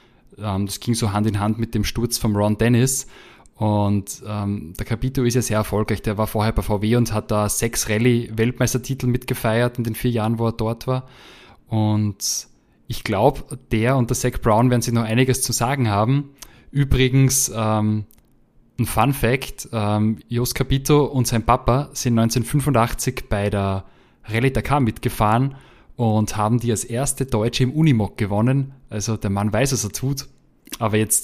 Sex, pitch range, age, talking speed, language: male, 105-125 Hz, 20-39, 175 wpm, German